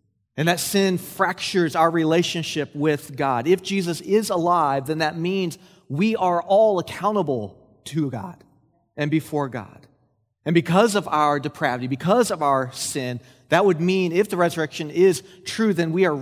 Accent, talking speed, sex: American, 165 wpm, male